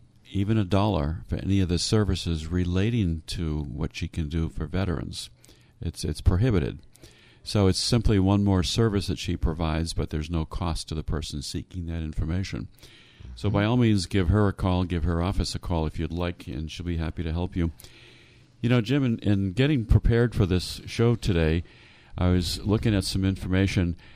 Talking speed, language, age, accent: 195 wpm, English, 50-69, American